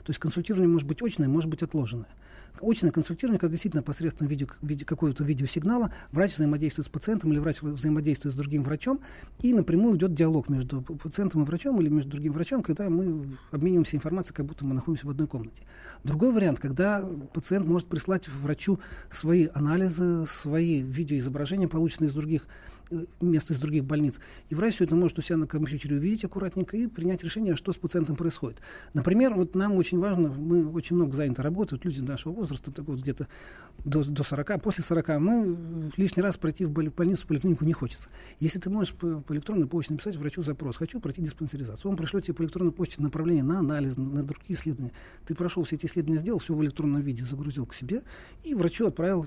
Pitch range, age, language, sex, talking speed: 145-175 Hz, 40-59, Russian, male, 190 wpm